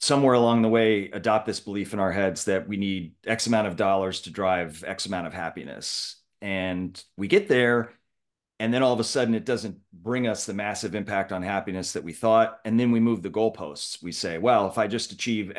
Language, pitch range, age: English, 90-115 Hz, 30-49